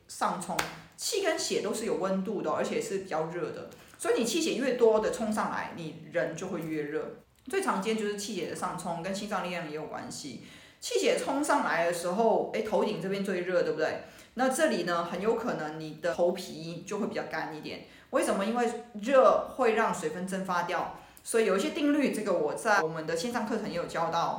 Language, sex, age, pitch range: Chinese, female, 20-39, 175-230 Hz